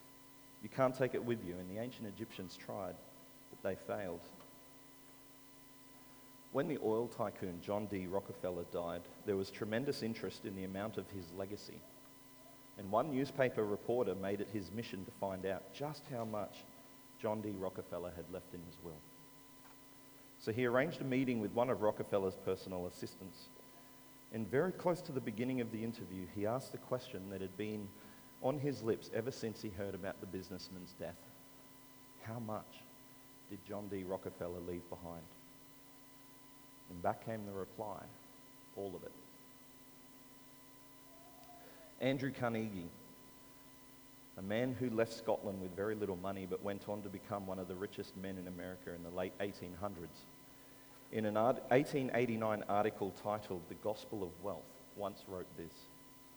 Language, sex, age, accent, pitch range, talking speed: English, male, 40-59, Australian, 95-125 Hz, 155 wpm